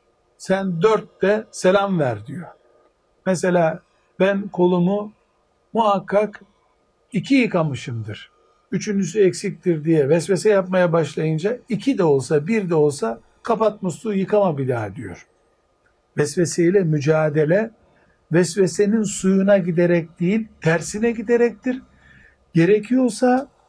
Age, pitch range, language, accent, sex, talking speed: 60-79, 155-200 Hz, Turkish, native, male, 95 wpm